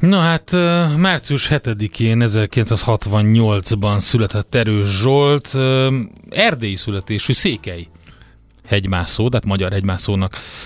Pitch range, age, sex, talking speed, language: 100-120 Hz, 30-49, male, 85 wpm, Hungarian